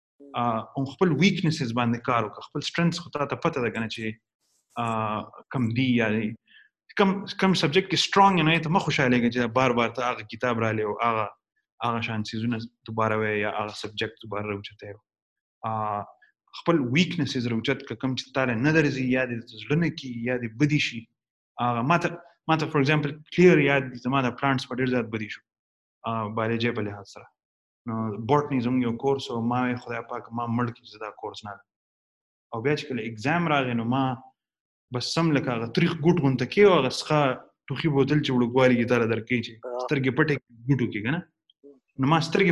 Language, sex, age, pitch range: Urdu, male, 30-49, 115-155 Hz